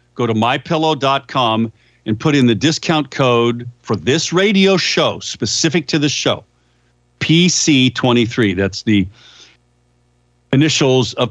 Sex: male